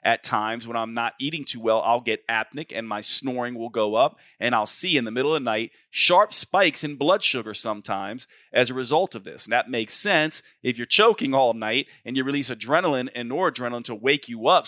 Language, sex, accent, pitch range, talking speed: English, male, American, 115-150 Hz, 230 wpm